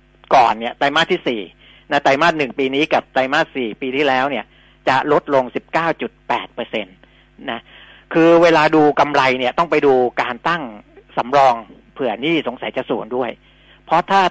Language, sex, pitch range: Thai, male, 125-165 Hz